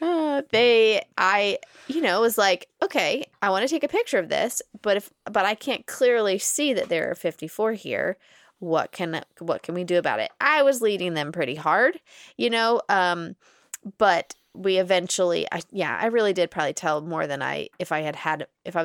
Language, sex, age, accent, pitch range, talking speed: English, female, 20-39, American, 170-230 Hz, 205 wpm